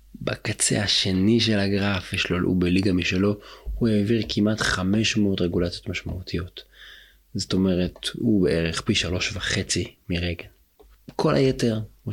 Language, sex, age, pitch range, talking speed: Hebrew, male, 30-49, 90-110 Hz, 120 wpm